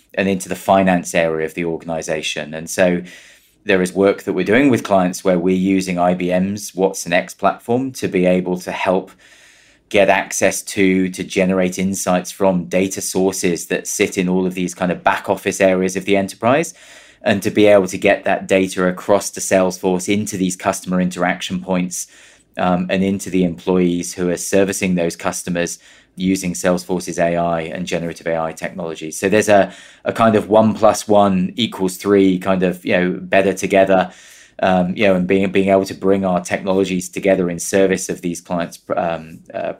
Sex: male